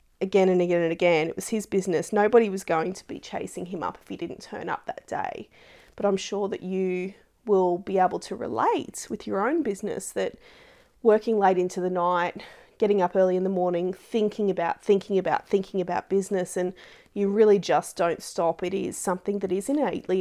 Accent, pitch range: Australian, 180-210 Hz